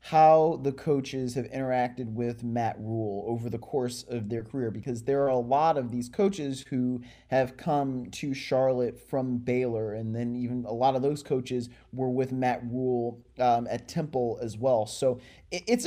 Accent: American